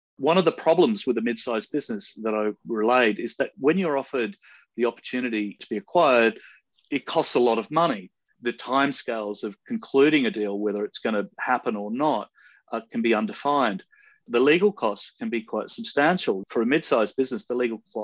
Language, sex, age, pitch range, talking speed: English, male, 40-59, 110-135 Hz, 195 wpm